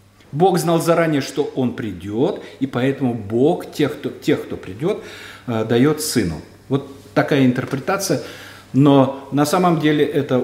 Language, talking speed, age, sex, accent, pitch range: Russian, 140 wpm, 50-69, male, native, 105-145 Hz